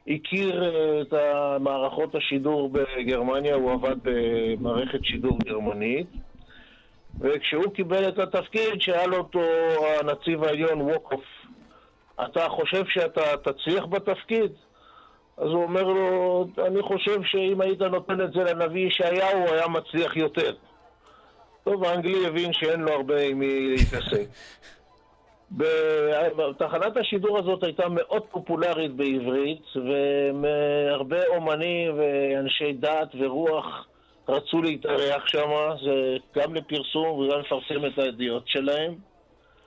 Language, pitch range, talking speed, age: Hebrew, 145-185 Hz, 110 wpm, 50-69